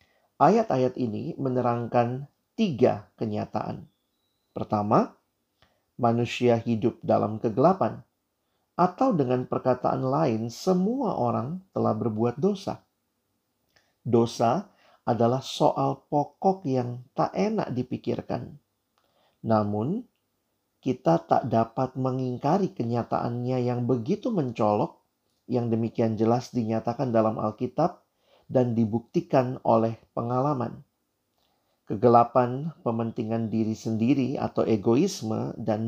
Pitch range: 115-140 Hz